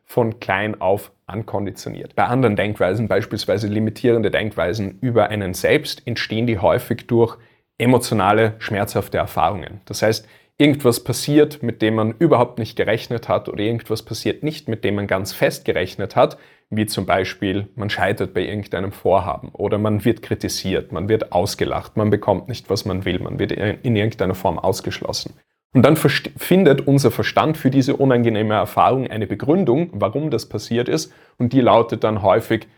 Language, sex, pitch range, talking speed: German, male, 105-120 Hz, 165 wpm